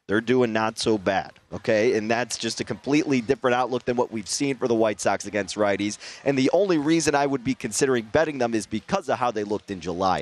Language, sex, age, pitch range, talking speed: English, male, 30-49, 105-140 Hz, 240 wpm